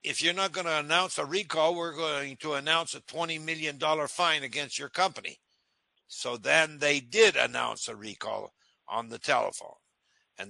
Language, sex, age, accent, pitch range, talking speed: English, male, 60-79, American, 145-180 Hz, 165 wpm